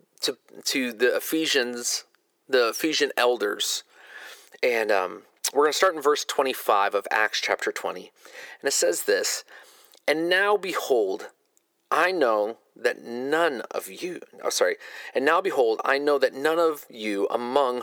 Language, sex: English, male